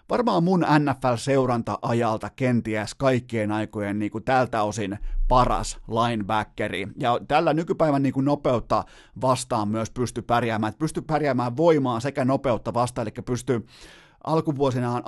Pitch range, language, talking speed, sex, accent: 115-135 Hz, Finnish, 120 wpm, male, native